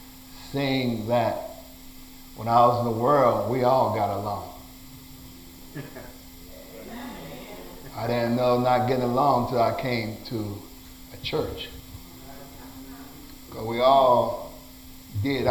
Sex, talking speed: male, 110 wpm